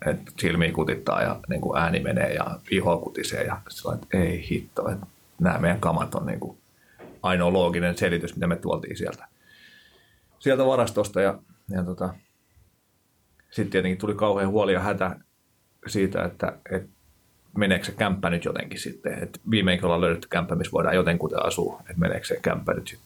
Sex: male